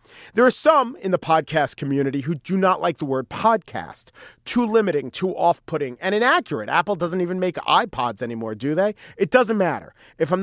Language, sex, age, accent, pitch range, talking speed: English, male, 40-59, American, 140-185 Hz, 190 wpm